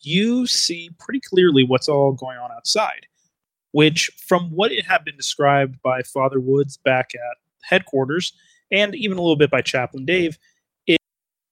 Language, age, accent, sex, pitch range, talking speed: English, 30-49, American, male, 135-165 Hz, 160 wpm